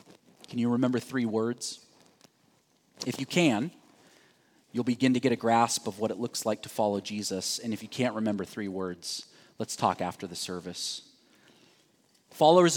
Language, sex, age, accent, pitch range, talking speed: English, male, 30-49, American, 115-145 Hz, 165 wpm